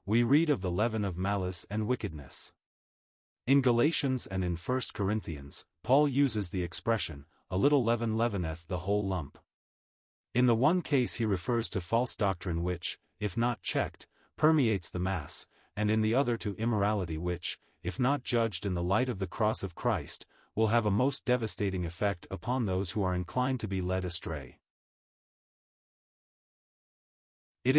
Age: 30-49